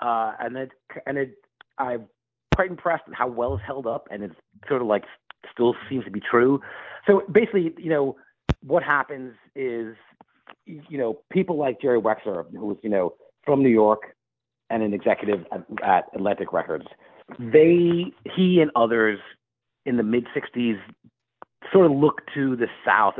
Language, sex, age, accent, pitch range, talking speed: English, male, 40-59, American, 115-155 Hz, 165 wpm